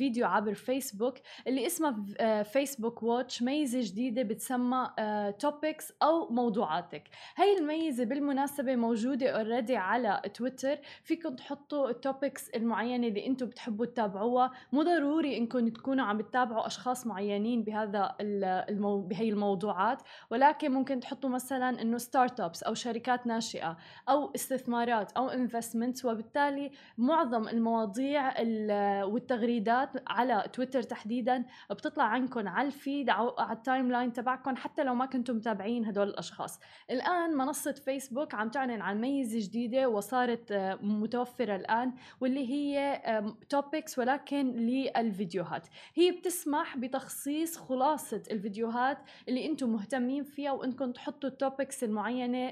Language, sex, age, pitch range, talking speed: Arabic, female, 20-39, 230-275 Hz, 120 wpm